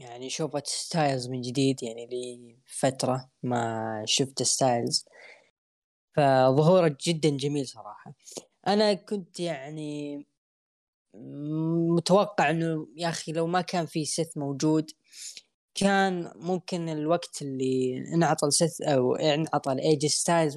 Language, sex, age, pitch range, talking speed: Arabic, female, 10-29, 140-170 Hz, 110 wpm